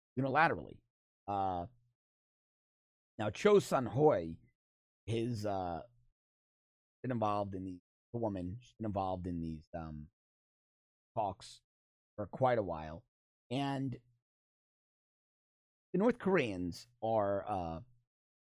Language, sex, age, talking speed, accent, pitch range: English, male, 30-49, 95 wpm, American, 90-135 Hz